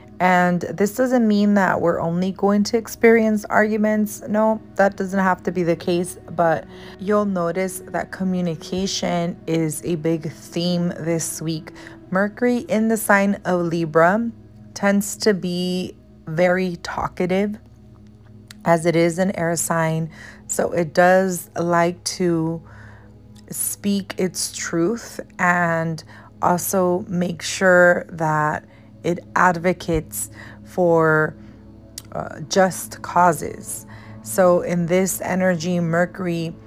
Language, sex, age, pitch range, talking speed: English, female, 30-49, 160-185 Hz, 115 wpm